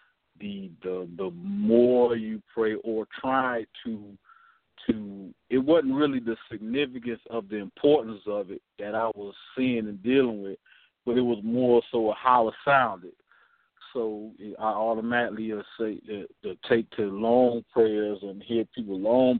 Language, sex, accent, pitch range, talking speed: English, male, American, 110-125 Hz, 155 wpm